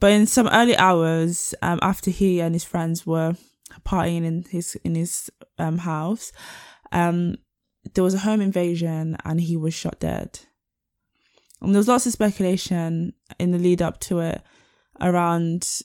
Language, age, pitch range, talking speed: English, 20-39, 165-195 Hz, 165 wpm